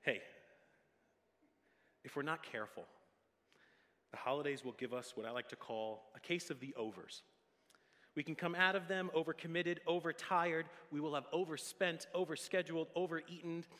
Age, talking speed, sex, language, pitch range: 30-49, 150 wpm, male, English, 110-160 Hz